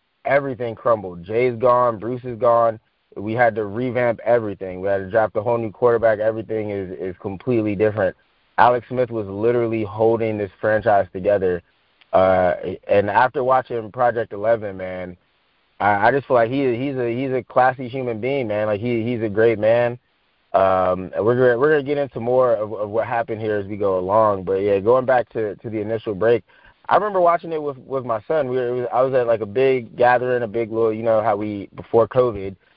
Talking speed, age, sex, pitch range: 210 wpm, 20-39, male, 105-125 Hz